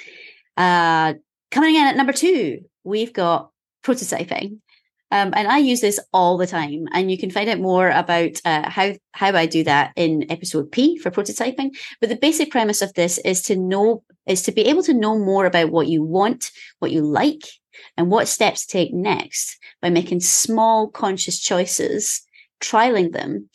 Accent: British